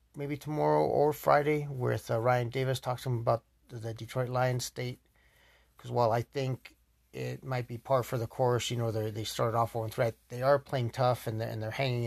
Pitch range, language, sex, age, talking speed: 110-120 Hz, English, male, 30-49, 220 wpm